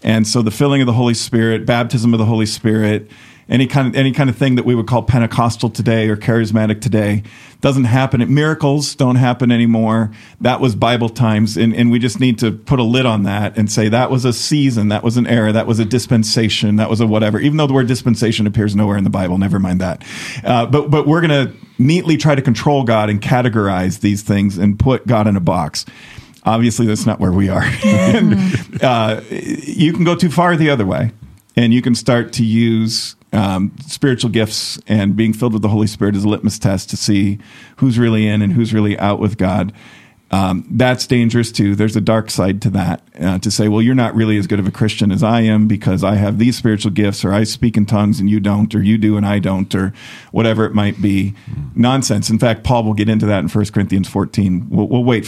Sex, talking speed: male, 230 wpm